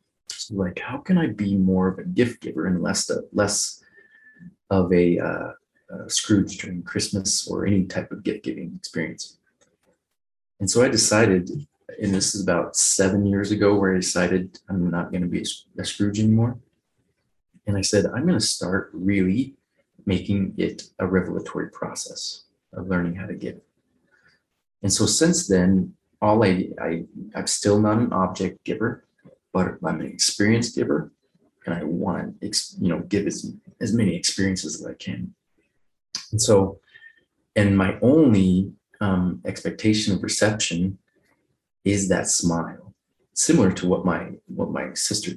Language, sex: English, male